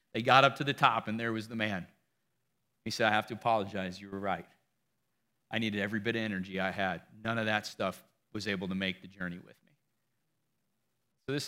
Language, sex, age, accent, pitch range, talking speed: English, male, 40-59, American, 110-135 Hz, 220 wpm